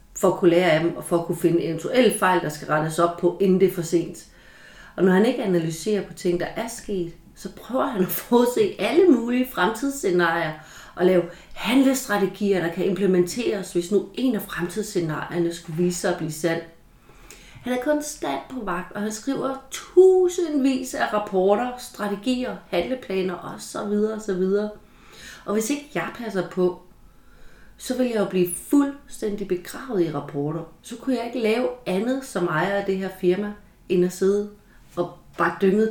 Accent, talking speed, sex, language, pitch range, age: native, 180 wpm, female, Danish, 170-220 Hz, 30-49